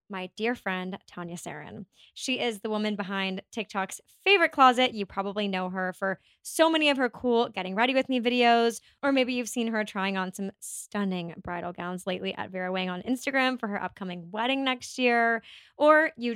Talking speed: 195 wpm